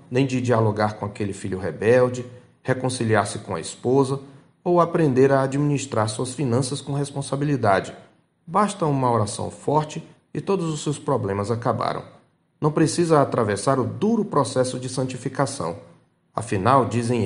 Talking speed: 135 wpm